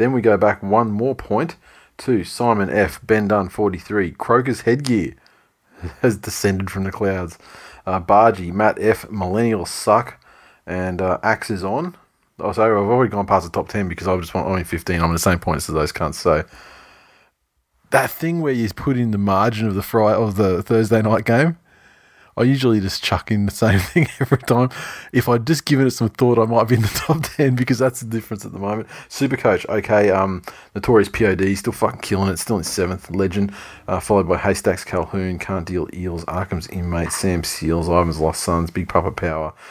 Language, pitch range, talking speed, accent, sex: English, 90-115 Hz, 200 wpm, Australian, male